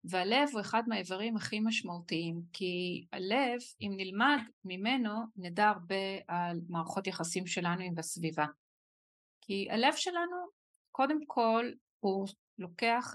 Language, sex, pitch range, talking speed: Hebrew, female, 180-230 Hz, 120 wpm